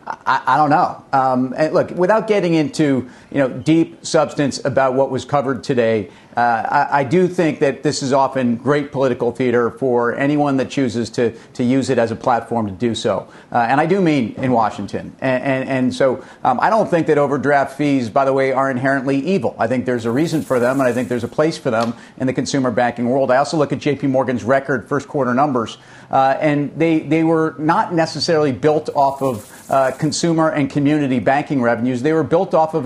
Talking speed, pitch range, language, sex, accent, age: 220 wpm, 125-155 Hz, English, male, American, 40-59